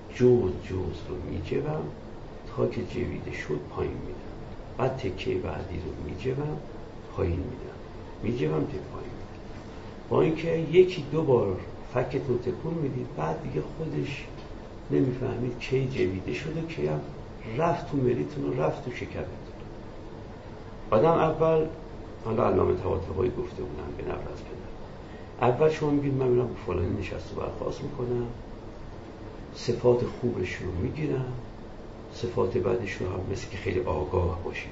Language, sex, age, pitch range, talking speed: Persian, male, 60-79, 95-125 Hz, 150 wpm